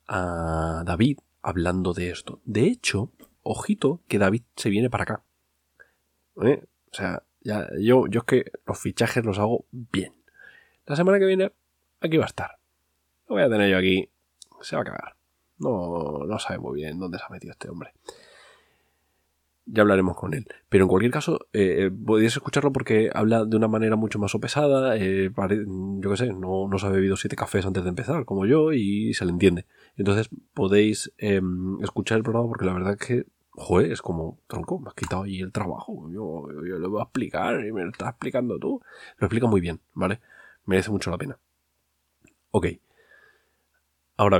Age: 20-39